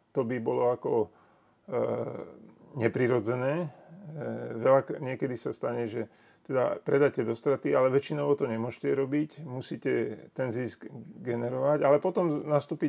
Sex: male